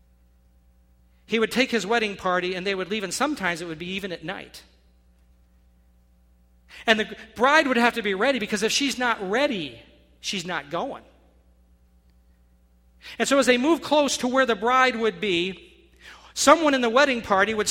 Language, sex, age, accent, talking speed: English, male, 50-69, American, 175 wpm